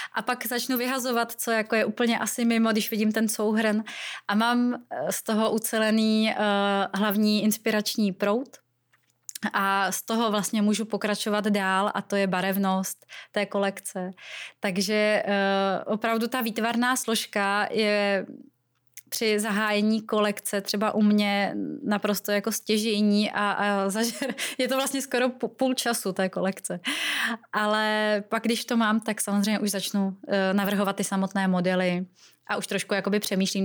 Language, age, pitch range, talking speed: Czech, 20-39, 200-225 Hz, 145 wpm